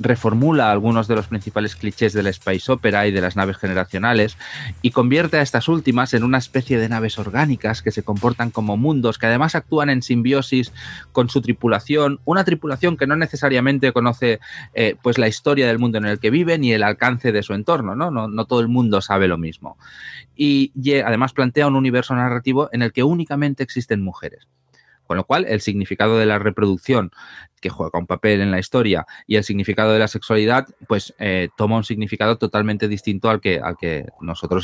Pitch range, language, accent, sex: 100-130 Hz, Spanish, Spanish, male